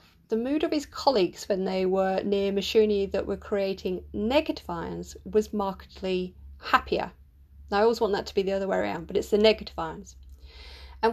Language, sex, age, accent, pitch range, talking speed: English, female, 30-49, British, 175-215 Hz, 190 wpm